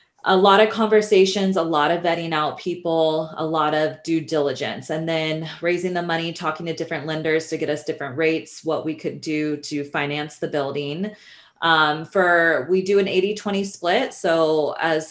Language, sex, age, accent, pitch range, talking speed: English, female, 20-39, American, 150-170 Hz, 185 wpm